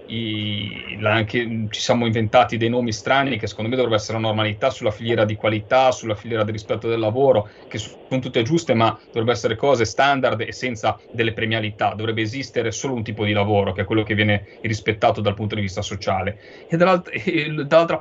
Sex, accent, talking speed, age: male, native, 190 wpm, 30-49